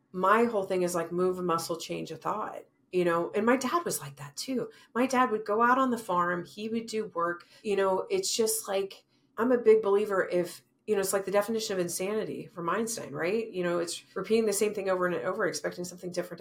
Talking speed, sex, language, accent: 240 wpm, female, English, American